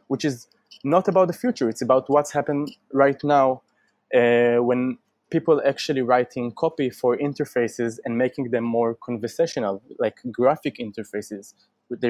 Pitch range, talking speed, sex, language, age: 120-145 Hz, 145 wpm, male, English, 20-39